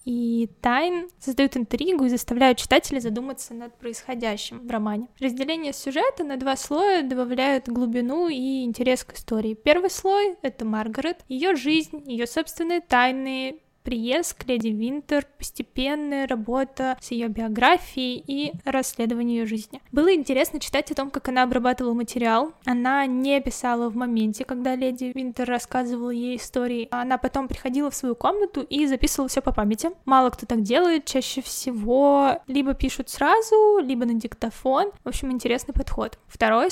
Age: 10-29